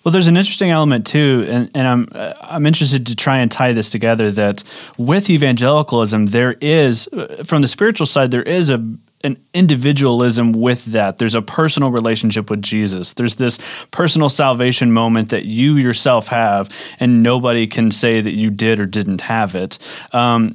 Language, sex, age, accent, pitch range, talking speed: English, male, 30-49, American, 115-150 Hz, 175 wpm